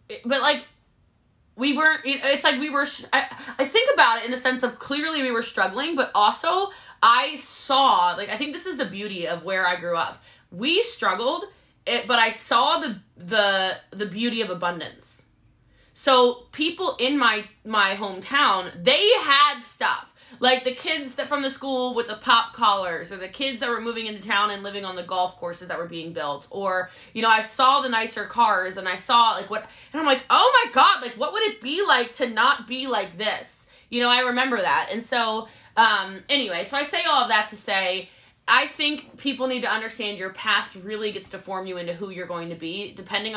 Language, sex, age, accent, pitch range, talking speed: English, female, 20-39, American, 190-265 Hz, 210 wpm